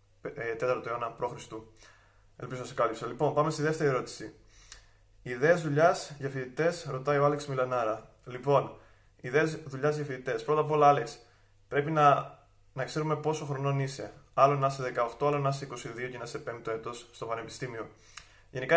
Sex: male